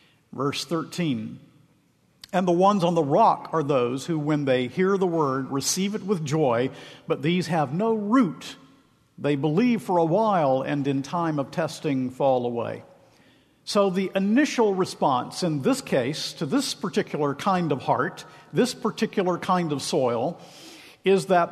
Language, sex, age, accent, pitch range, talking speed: English, male, 50-69, American, 145-190 Hz, 160 wpm